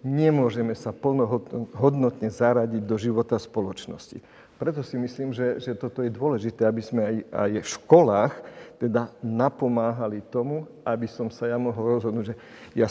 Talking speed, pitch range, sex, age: 150 wpm, 115-135 Hz, male, 50-69